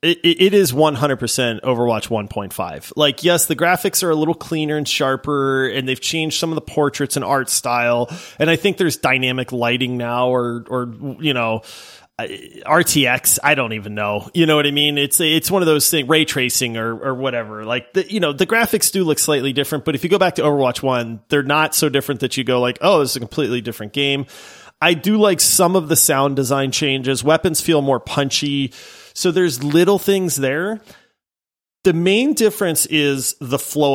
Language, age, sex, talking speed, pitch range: English, 30-49, male, 200 wpm, 130-165 Hz